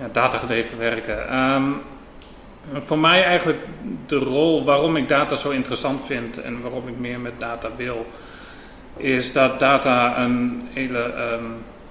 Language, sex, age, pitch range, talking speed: Dutch, male, 30-49, 115-135 Hz, 145 wpm